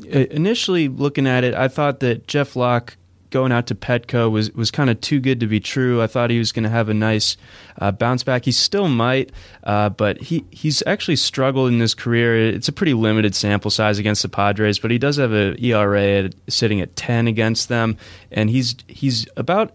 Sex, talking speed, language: male, 215 wpm, English